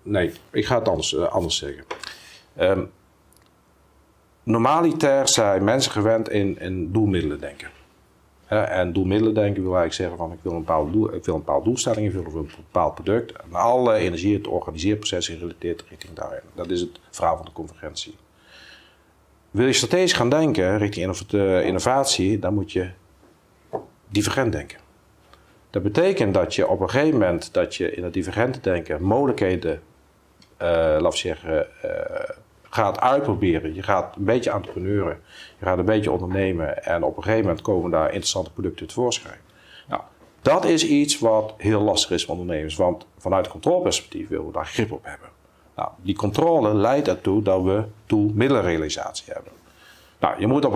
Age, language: 50-69, Dutch